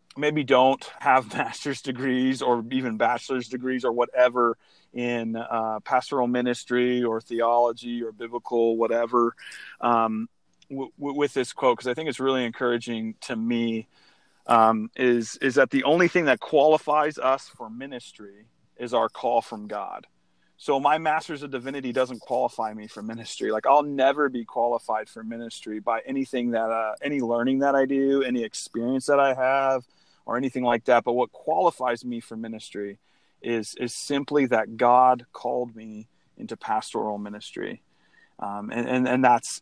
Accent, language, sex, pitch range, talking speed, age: American, English, male, 115-130 Hz, 160 wpm, 30-49